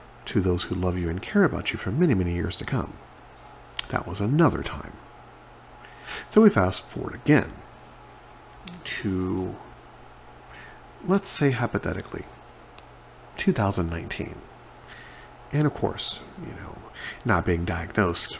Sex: male